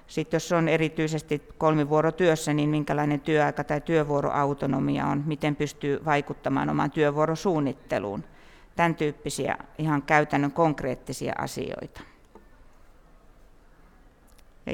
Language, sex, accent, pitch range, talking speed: Finnish, female, native, 145-165 Hz, 95 wpm